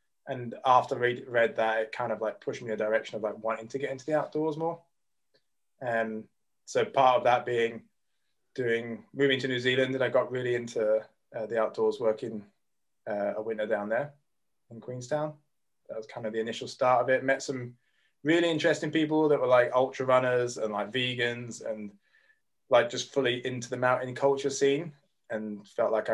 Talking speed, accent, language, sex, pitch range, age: 195 wpm, British, English, male, 115-140 Hz, 20-39